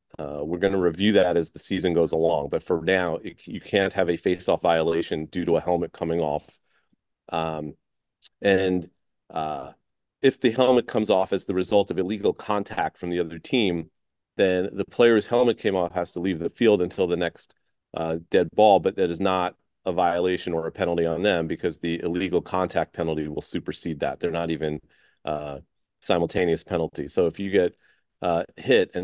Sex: male